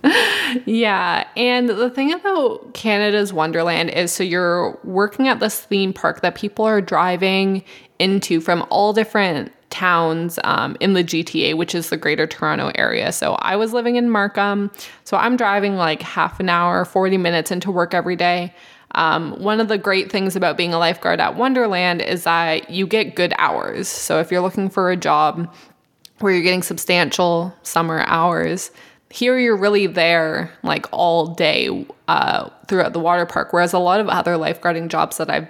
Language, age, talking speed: English, 20-39, 175 wpm